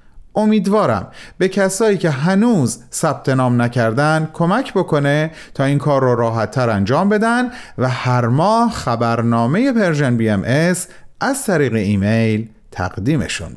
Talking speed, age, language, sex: 125 wpm, 40-59, Persian, male